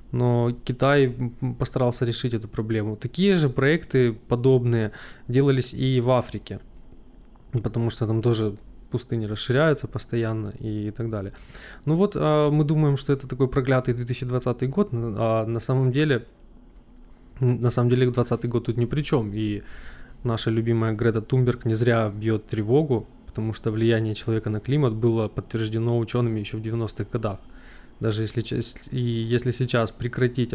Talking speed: 145 wpm